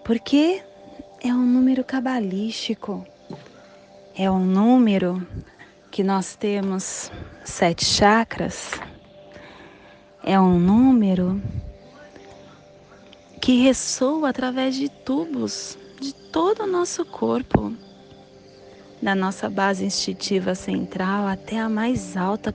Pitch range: 175-220 Hz